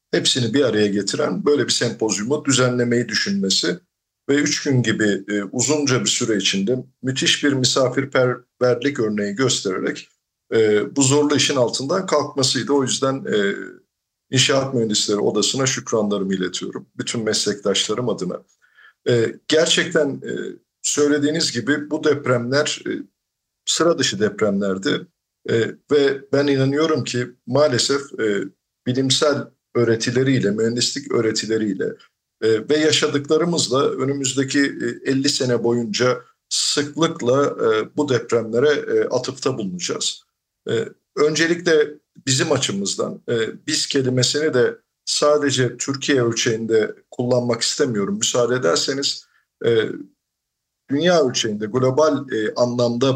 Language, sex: Turkish, male